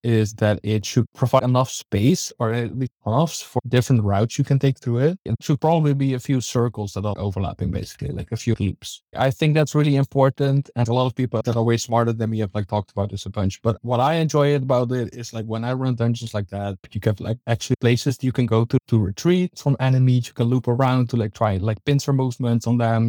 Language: English